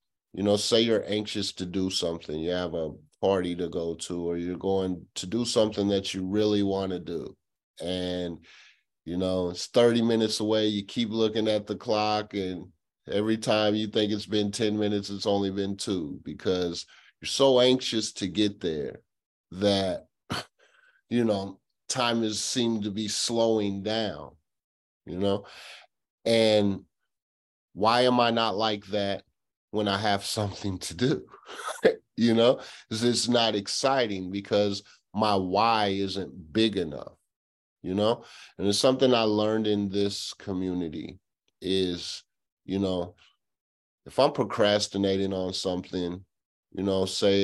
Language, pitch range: English, 95-110 Hz